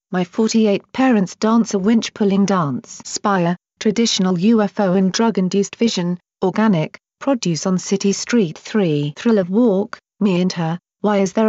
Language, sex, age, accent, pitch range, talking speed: English, female, 40-59, British, 185-225 Hz, 145 wpm